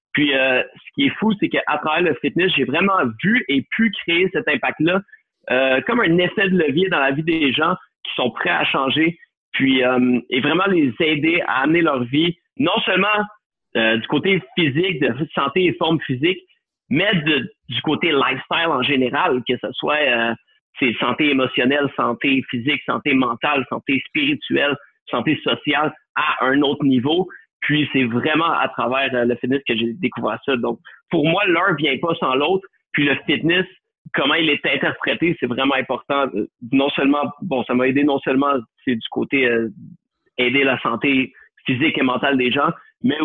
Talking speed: 185 wpm